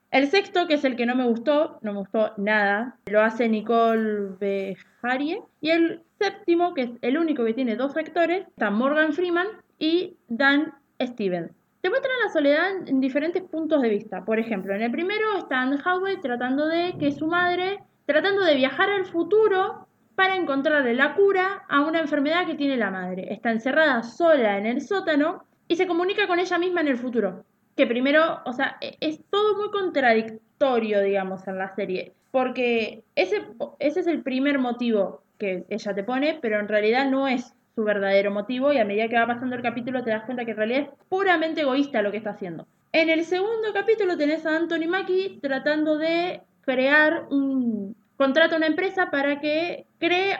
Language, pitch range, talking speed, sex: Spanish, 230-340 Hz, 190 wpm, female